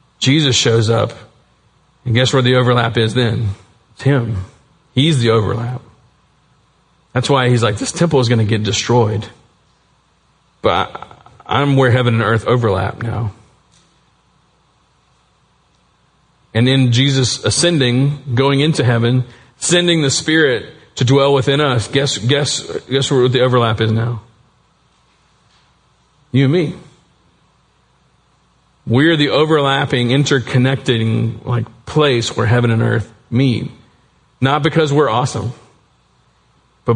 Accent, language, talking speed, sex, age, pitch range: American, English, 120 wpm, male, 40-59, 115-140 Hz